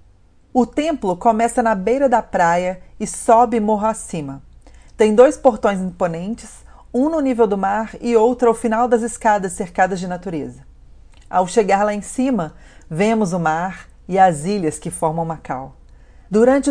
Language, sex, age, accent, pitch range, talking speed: Portuguese, female, 40-59, Brazilian, 165-220 Hz, 160 wpm